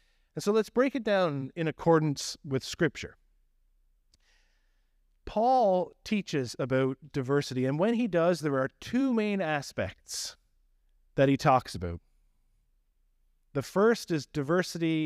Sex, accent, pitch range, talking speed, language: male, American, 125-185 Hz, 125 wpm, English